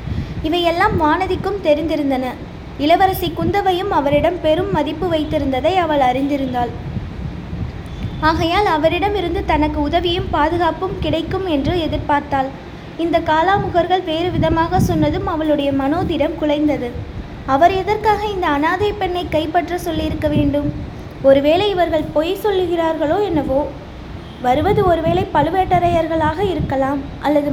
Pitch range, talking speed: 295-360 Hz, 100 wpm